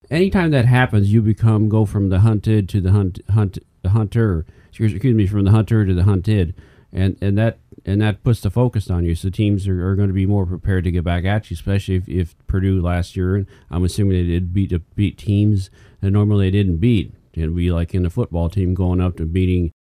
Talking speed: 230 wpm